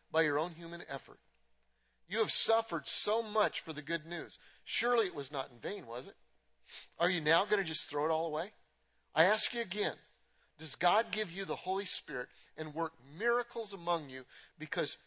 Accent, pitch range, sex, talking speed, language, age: American, 145-195 Hz, male, 195 wpm, English, 50-69